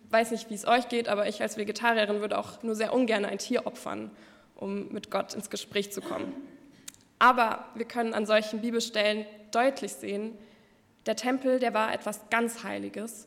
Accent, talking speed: German, 180 wpm